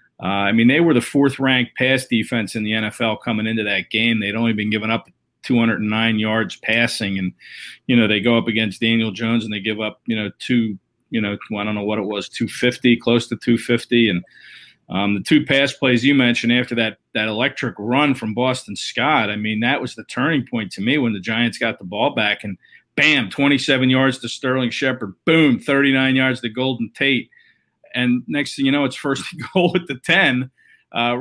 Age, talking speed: 40-59, 210 wpm